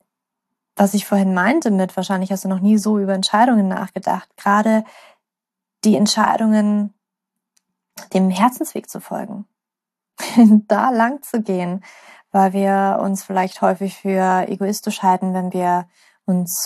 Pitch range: 190-215 Hz